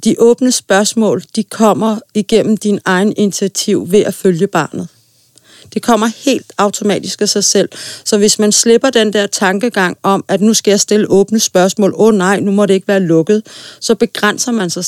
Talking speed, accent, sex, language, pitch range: 195 wpm, native, female, Danish, 190-230 Hz